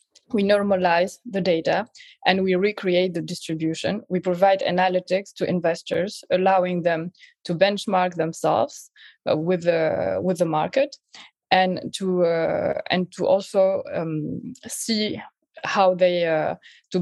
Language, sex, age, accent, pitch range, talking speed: English, female, 20-39, French, 175-200 Hz, 130 wpm